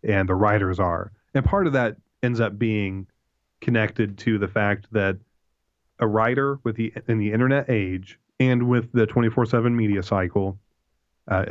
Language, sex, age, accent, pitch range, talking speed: English, male, 30-49, American, 100-115 Hz, 165 wpm